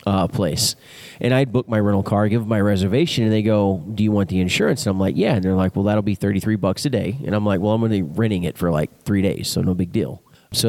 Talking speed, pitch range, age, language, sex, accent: 285 wpm, 95-125 Hz, 30-49, English, male, American